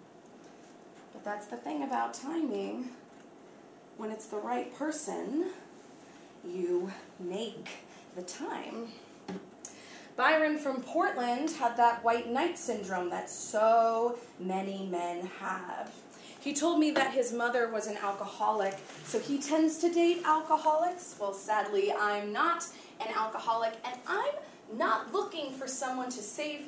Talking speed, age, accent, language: 130 wpm, 20-39, American, English